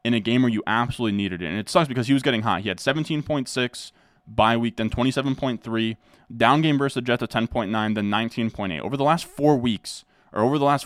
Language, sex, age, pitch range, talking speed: English, male, 20-39, 105-125 Hz, 225 wpm